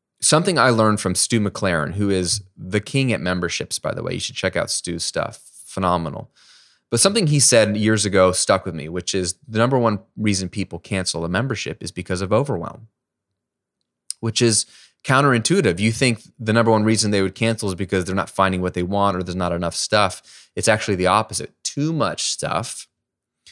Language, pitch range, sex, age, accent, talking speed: English, 90-120 Hz, male, 20-39, American, 195 wpm